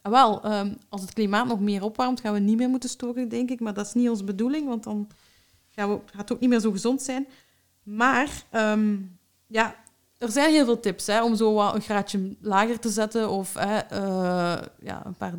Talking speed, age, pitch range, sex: 220 wpm, 30-49, 180-225 Hz, female